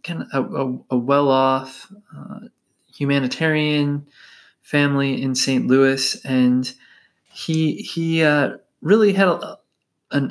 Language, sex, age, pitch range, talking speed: English, male, 20-39, 125-155 Hz, 110 wpm